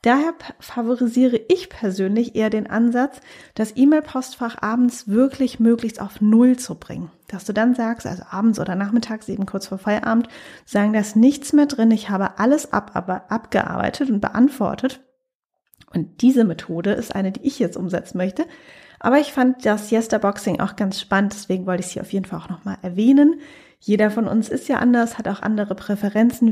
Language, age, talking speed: German, 30-49, 185 wpm